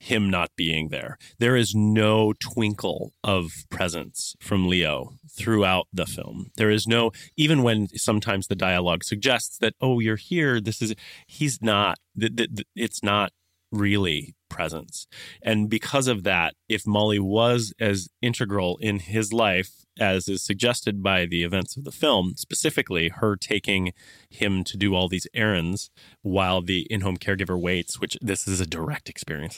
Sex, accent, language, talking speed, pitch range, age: male, American, English, 160 wpm, 90-115 Hz, 30-49